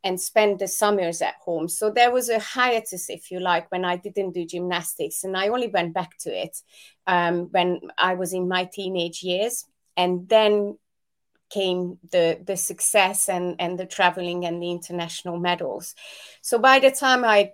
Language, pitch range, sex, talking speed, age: English, 175-210 Hz, female, 180 wpm, 30-49